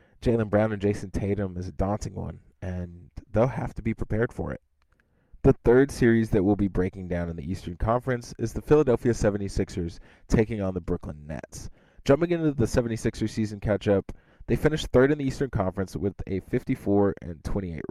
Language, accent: English, American